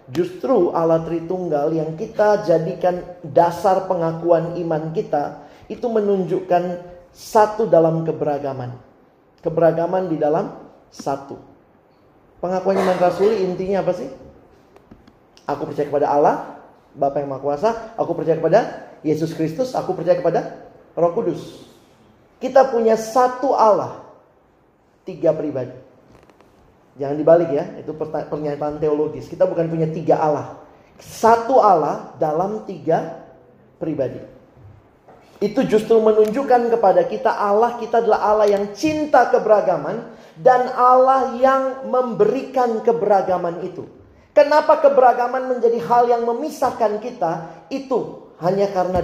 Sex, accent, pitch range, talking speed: male, native, 160-235 Hz, 115 wpm